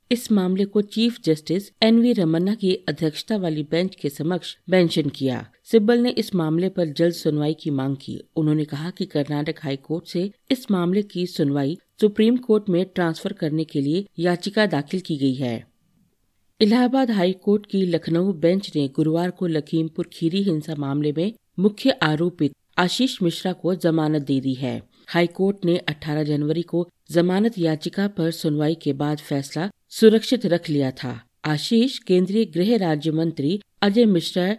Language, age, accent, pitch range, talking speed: Hindi, 50-69, native, 155-195 Hz, 165 wpm